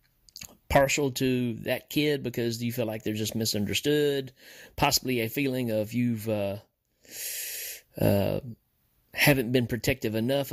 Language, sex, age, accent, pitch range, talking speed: English, male, 30-49, American, 110-130 Hz, 130 wpm